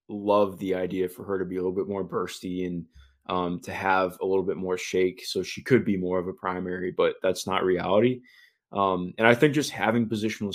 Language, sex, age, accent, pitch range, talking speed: English, male, 20-39, American, 95-120 Hz, 230 wpm